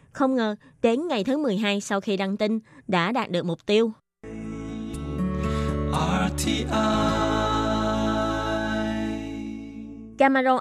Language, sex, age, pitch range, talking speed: Vietnamese, female, 20-39, 190-255 Hz, 90 wpm